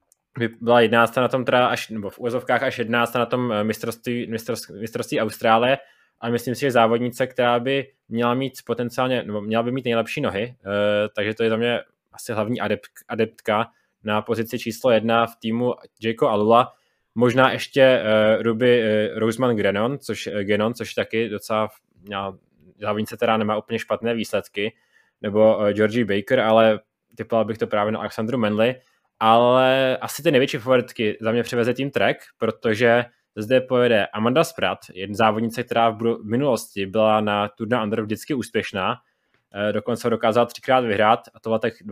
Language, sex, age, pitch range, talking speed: Czech, male, 20-39, 110-125 Hz, 165 wpm